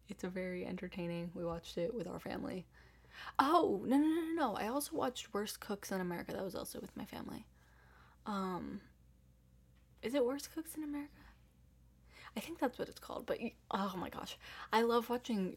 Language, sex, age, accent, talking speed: English, female, 10-29, American, 190 wpm